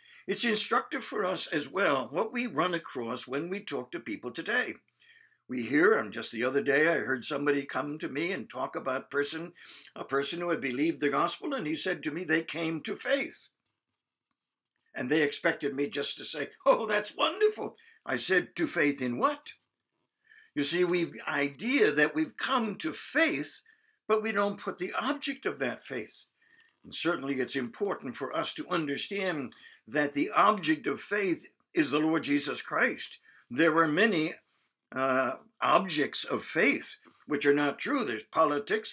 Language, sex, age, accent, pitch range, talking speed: English, male, 60-79, American, 145-245 Hz, 175 wpm